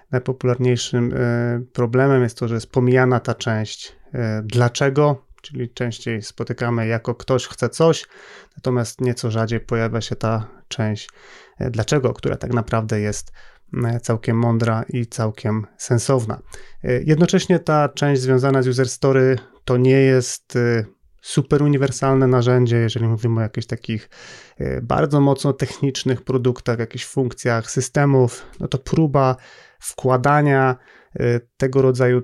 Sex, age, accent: male, 30-49, native